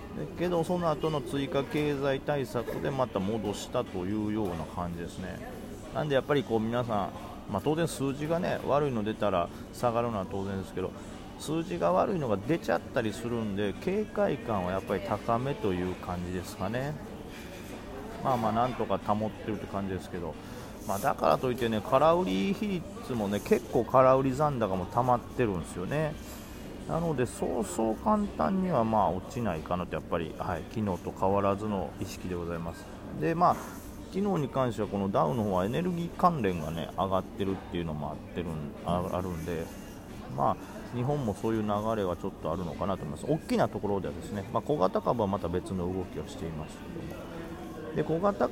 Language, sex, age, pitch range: Japanese, male, 30-49, 90-125 Hz